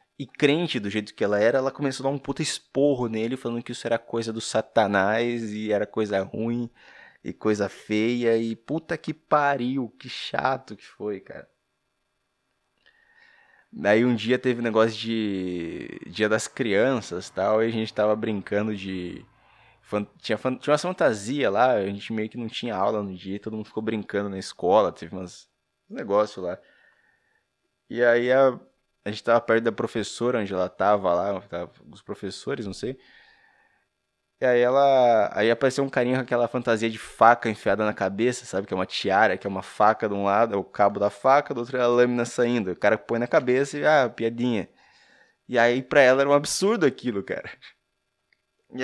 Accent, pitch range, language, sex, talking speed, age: Brazilian, 105-130 Hz, Portuguese, male, 190 wpm, 20-39